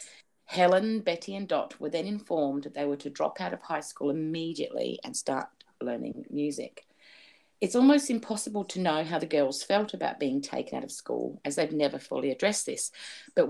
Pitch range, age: 145-225 Hz, 40-59